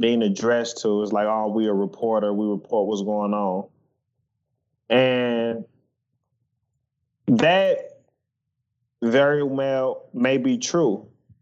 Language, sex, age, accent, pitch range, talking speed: English, male, 20-39, American, 115-135 Hz, 110 wpm